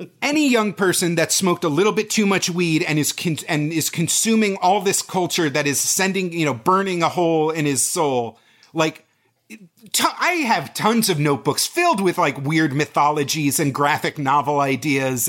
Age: 30-49